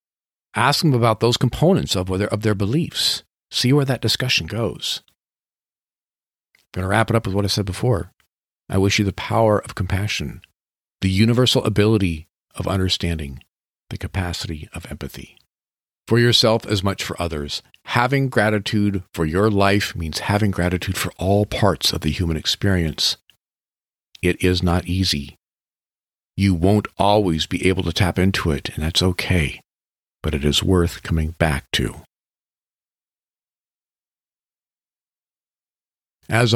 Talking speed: 140 wpm